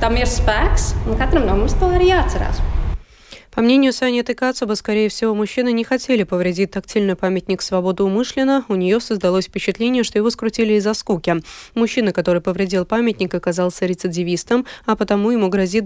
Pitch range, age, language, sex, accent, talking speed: 180-230 Hz, 20-39, Russian, female, native, 130 wpm